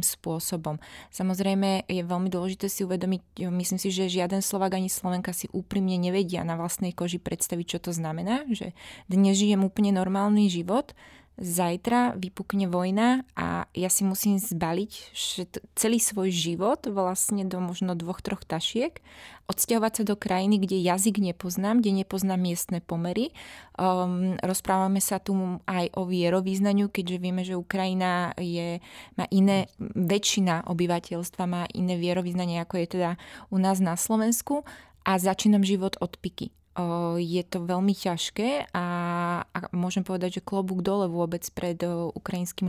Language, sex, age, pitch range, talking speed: Slovak, female, 20-39, 175-200 Hz, 150 wpm